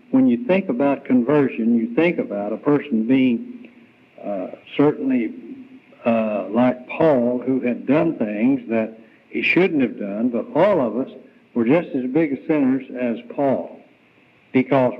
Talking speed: 150 wpm